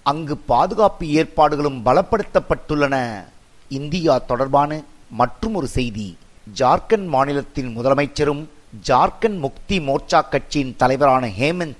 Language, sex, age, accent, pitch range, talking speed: Tamil, male, 50-69, native, 135-165 Hz, 90 wpm